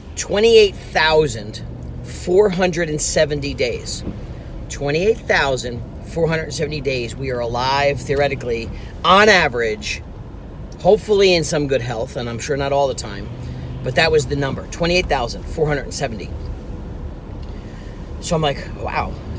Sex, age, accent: male, 40-59, American